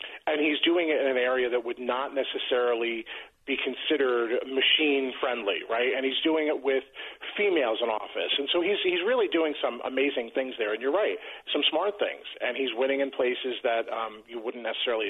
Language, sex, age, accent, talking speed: English, male, 40-59, American, 195 wpm